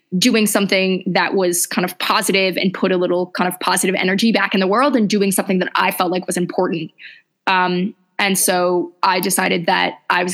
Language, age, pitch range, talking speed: English, 20-39, 180-200 Hz, 210 wpm